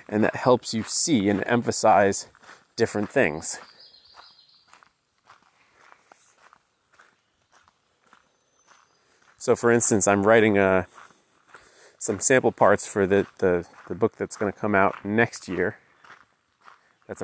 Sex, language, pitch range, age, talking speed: male, English, 100-120 Hz, 30-49, 100 wpm